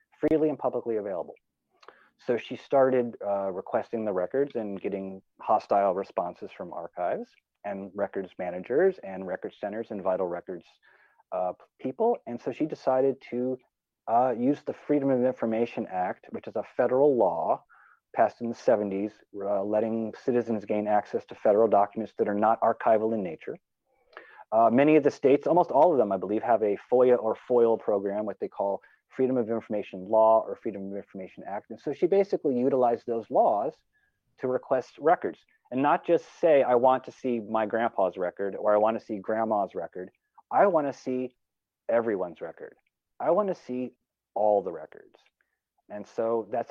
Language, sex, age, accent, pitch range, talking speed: English, male, 30-49, American, 105-140 Hz, 175 wpm